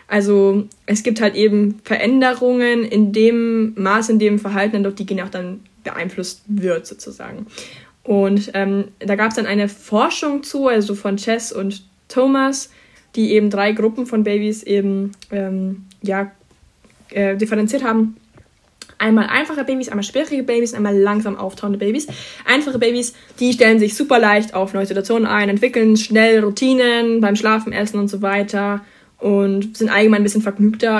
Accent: German